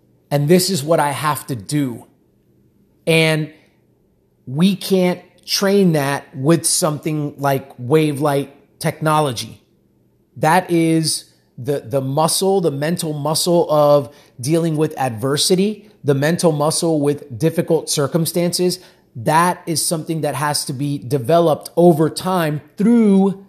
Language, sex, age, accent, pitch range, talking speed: English, male, 30-49, American, 145-175 Hz, 125 wpm